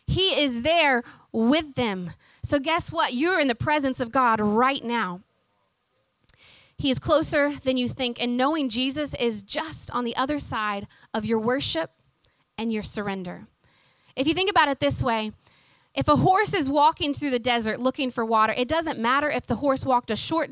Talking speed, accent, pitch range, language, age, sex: 185 wpm, American, 235-305 Hz, English, 30-49, female